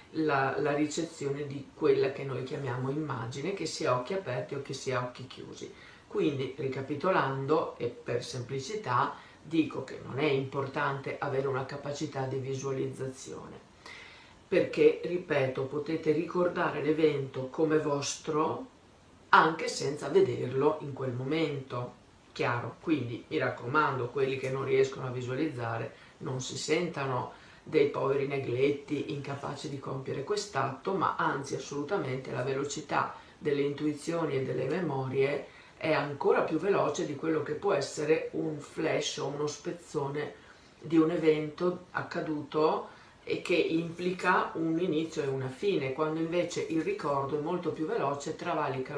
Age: 50-69